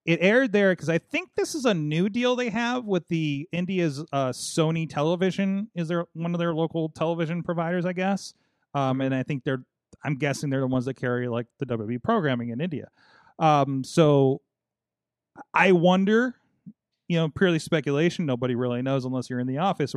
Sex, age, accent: male, 30-49, American